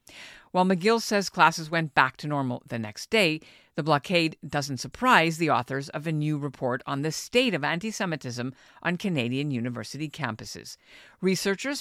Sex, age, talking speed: female, 50-69, 160 wpm